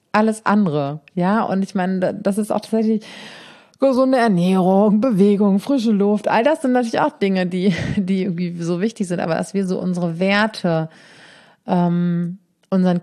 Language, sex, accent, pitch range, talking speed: German, female, German, 175-210 Hz, 160 wpm